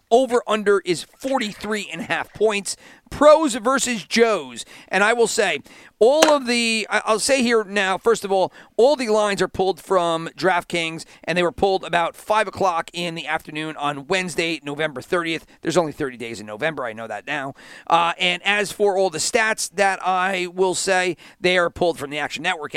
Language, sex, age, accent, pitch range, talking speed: English, male, 40-59, American, 165-210 Hz, 185 wpm